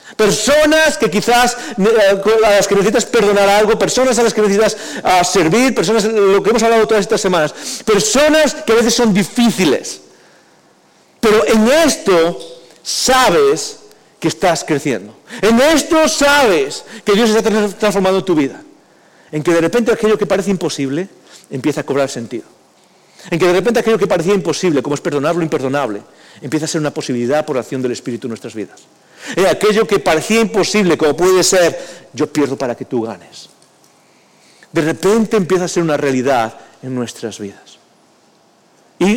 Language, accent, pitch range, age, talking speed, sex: English, Spanish, 165-225 Hz, 40-59, 165 wpm, male